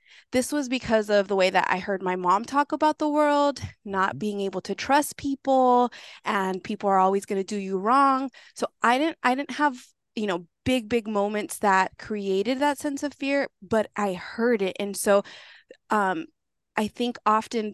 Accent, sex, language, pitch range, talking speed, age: American, female, English, 200-260 Hz, 195 wpm, 20-39